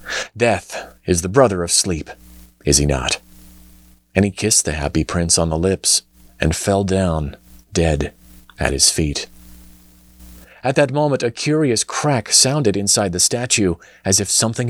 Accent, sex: American, male